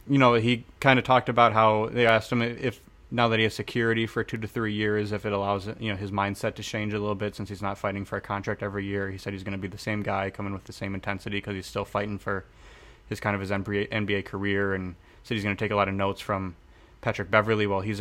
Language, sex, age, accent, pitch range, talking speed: English, male, 20-39, American, 95-110 Hz, 275 wpm